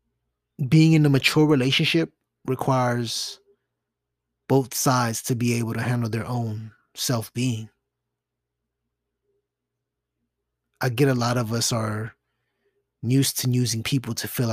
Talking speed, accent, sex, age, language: 120 wpm, American, male, 20-39, English